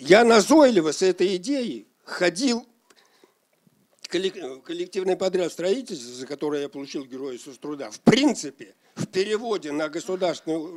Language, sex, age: Russian, male, 60-79